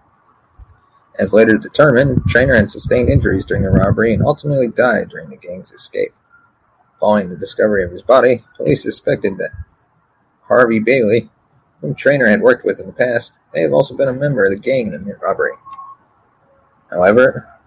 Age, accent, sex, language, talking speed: 30-49, American, male, English, 170 wpm